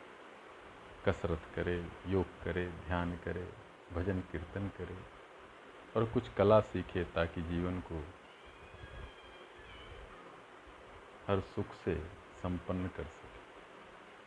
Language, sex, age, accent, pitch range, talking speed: Hindi, male, 50-69, native, 85-100 Hz, 95 wpm